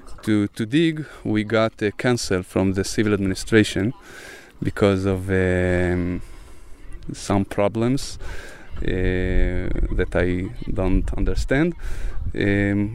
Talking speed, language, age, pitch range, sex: 100 wpm, English, 20-39, 95-110 Hz, male